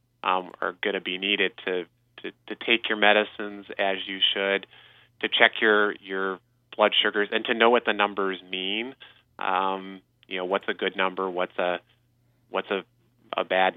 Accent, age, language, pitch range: American, 20-39, English, 95-110 Hz